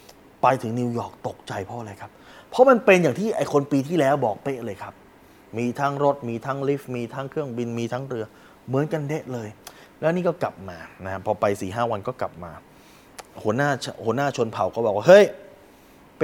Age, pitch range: 20-39, 120-190 Hz